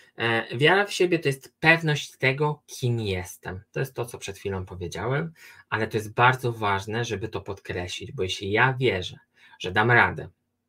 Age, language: 20-39, Polish